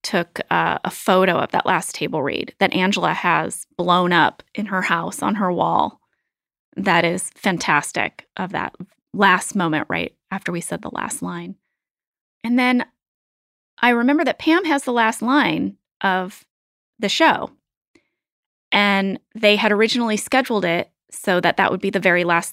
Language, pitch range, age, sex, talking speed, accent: English, 180-230 Hz, 30-49, female, 160 wpm, American